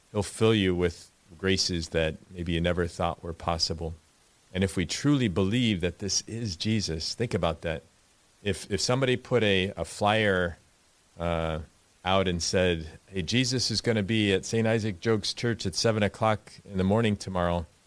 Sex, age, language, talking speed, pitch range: male, 40-59, English, 180 wpm, 85-100 Hz